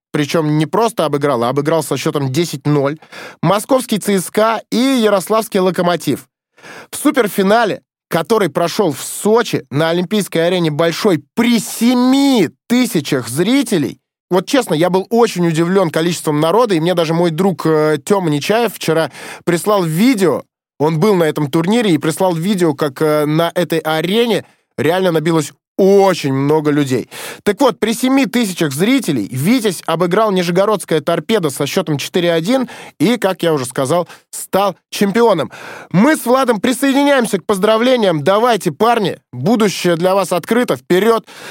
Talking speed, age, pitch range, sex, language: 140 wpm, 20-39, 160-220 Hz, male, Russian